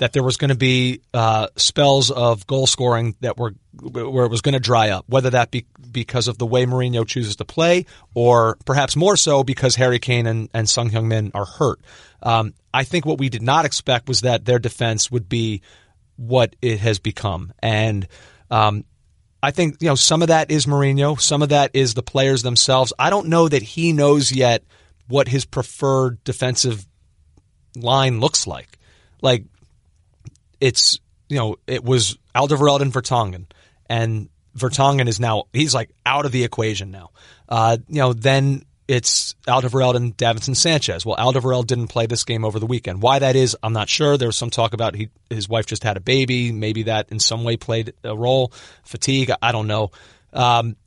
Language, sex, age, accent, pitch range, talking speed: English, male, 30-49, American, 110-135 Hz, 195 wpm